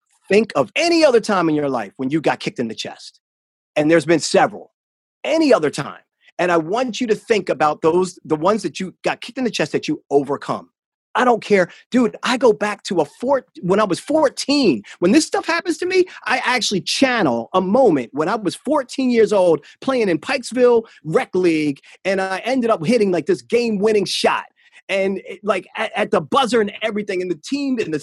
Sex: male